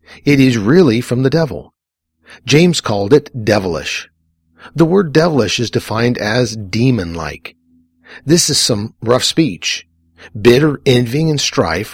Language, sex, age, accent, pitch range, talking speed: English, male, 50-69, American, 105-145 Hz, 130 wpm